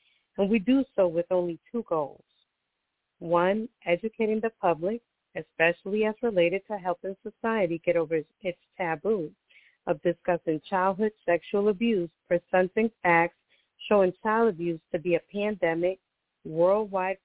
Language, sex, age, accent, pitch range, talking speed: English, female, 40-59, American, 165-205 Hz, 130 wpm